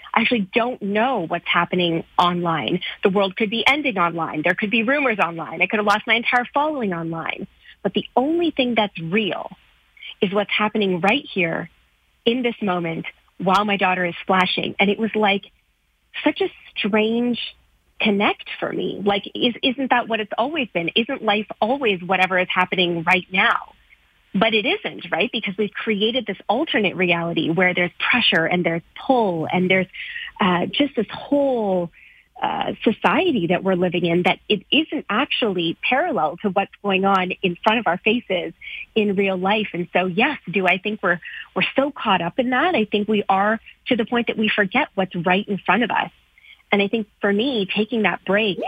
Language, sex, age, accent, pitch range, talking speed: English, female, 30-49, American, 185-235 Hz, 185 wpm